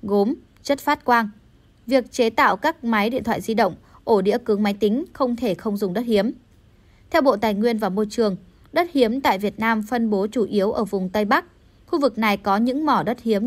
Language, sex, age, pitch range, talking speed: Vietnamese, female, 20-39, 210-260 Hz, 230 wpm